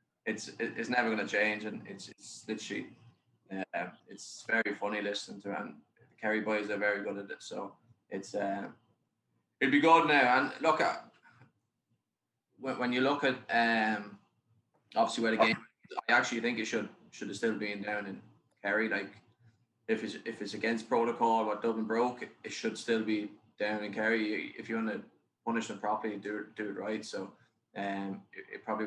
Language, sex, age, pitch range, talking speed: English, male, 20-39, 105-115 Hz, 185 wpm